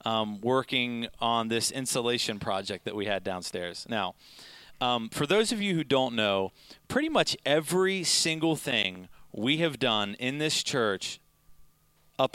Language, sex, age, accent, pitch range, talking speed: English, male, 30-49, American, 115-155 Hz, 150 wpm